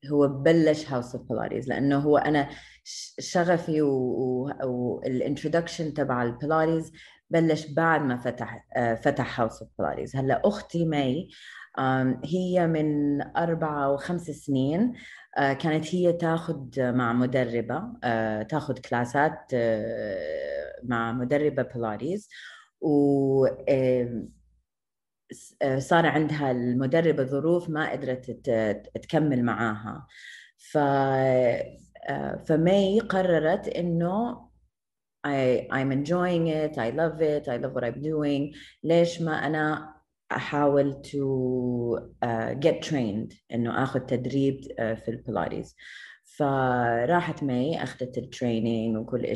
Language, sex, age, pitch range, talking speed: Arabic, female, 30-49, 125-155 Hz, 95 wpm